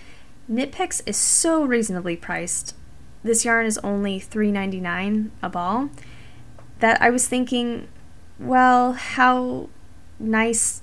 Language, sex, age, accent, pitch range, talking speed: English, female, 20-39, American, 205-255 Hz, 105 wpm